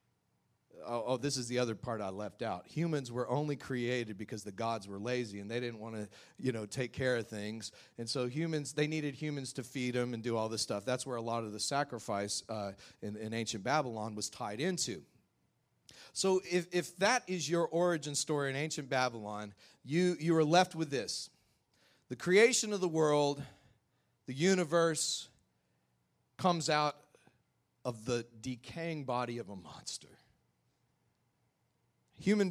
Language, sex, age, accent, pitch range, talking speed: English, male, 40-59, American, 115-155 Hz, 170 wpm